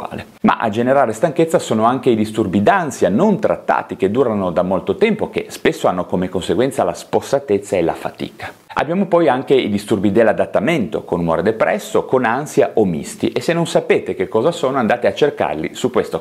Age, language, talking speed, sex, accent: 30-49, Italian, 190 wpm, male, native